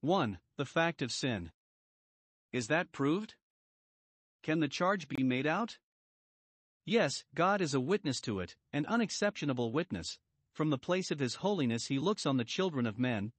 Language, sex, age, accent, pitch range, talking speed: English, male, 50-69, American, 125-175 Hz, 165 wpm